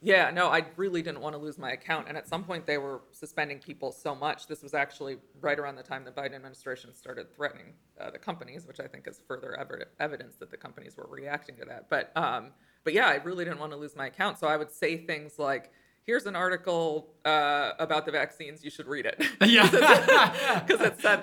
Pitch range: 140-165 Hz